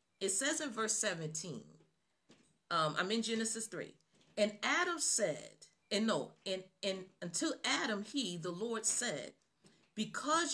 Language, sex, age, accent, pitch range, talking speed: English, female, 40-59, American, 175-250 Hz, 135 wpm